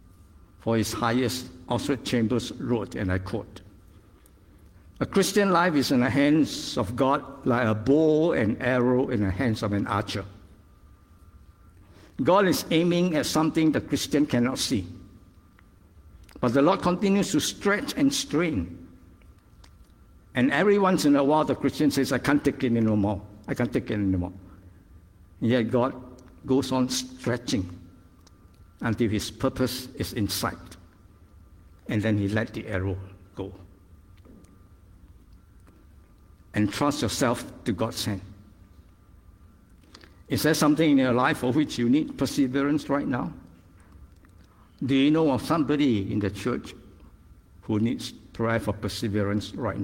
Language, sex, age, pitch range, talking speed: English, male, 60-79, 90-125 Hz, 140 wpm